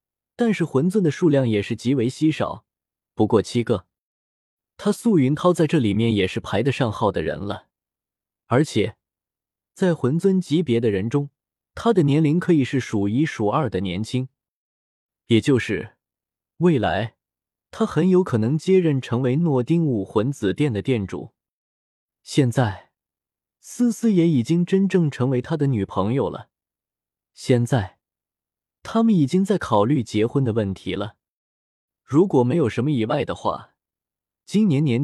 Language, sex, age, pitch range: Chinese, male, 20-39, 105-155 Hz